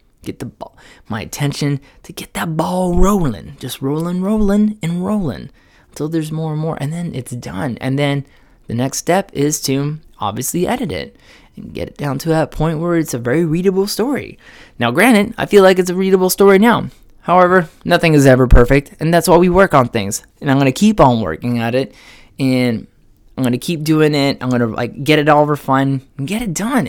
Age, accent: 20-39, American